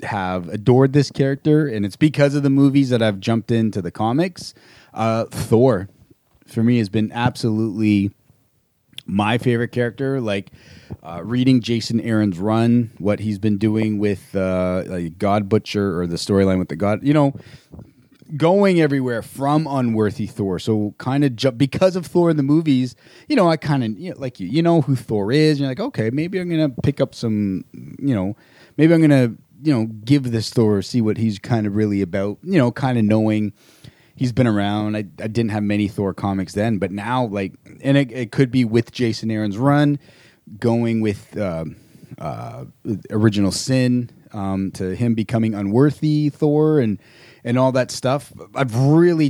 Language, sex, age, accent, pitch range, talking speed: English, male, 30-49, American, 105-140 Hz, 185 wpm